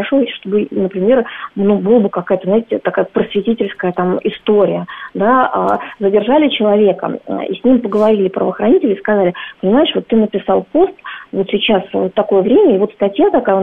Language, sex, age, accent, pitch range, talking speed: Russian, female, 20-39, native, 195-250 Hz, 155 wpm